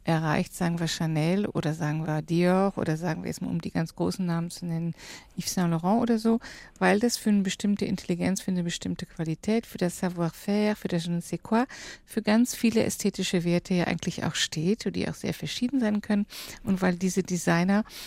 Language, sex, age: German, female, 50-69